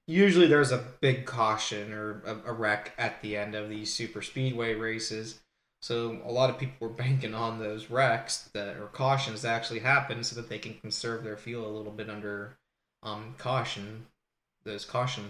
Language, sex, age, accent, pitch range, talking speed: English, male, 20-39, American, 110-135 Hz, 190 wpm